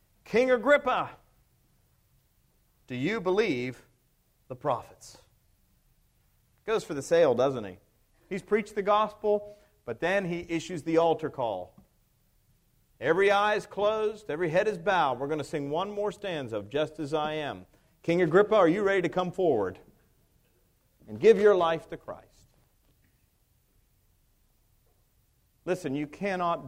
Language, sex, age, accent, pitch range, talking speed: English, male, 40-59, American, 125-205 Hz, 135 wpm